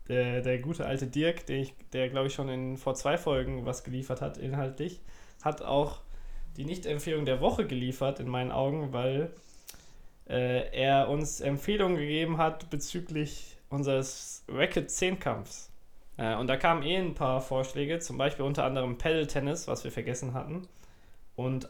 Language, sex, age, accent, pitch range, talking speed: German, male, 20-39, German, 130-165 Hz, 160 wpm